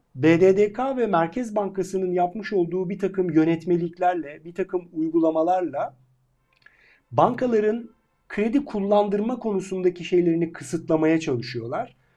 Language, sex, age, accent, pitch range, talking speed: Turkish, male, 50-69, native, 145-190 Hz, 95 wpm